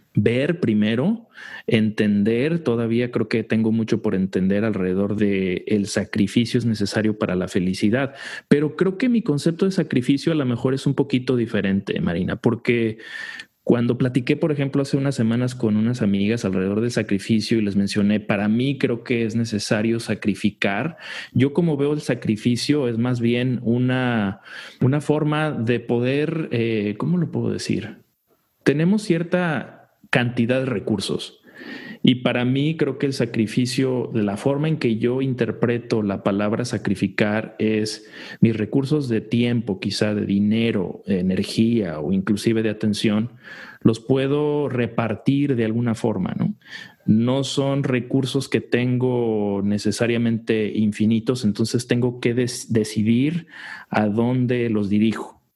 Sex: male